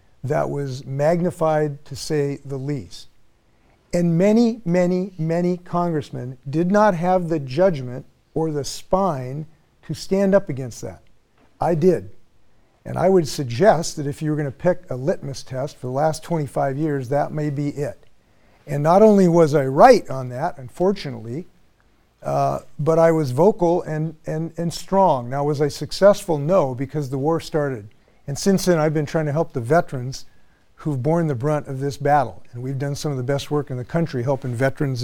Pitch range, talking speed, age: 135-170 Hz, 180 wpm, 50-69